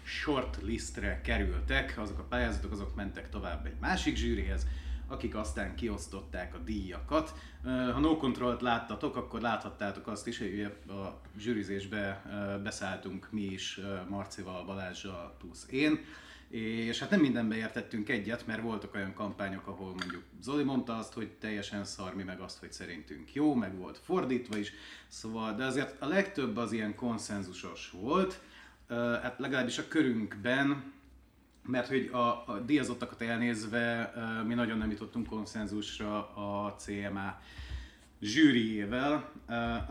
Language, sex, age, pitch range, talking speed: Hungarian, male, 30-49, 100-120 Hz, 140 wpm